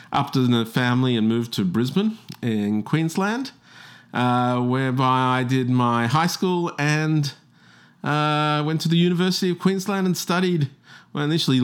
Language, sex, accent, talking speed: English, male, Australian, 145 wpm